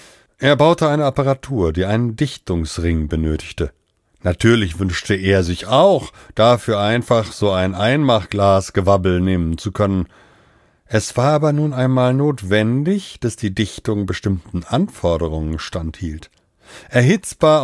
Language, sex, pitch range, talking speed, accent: German, male, 95-130 Hz, 120 wpm, German